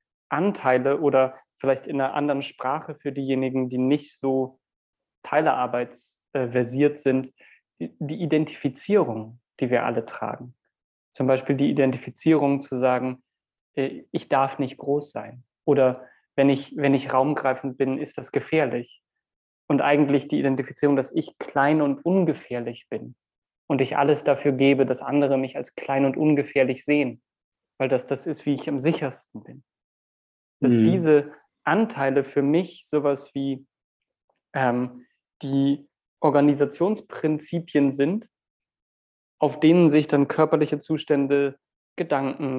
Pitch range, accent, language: 130-150 Hz, German, English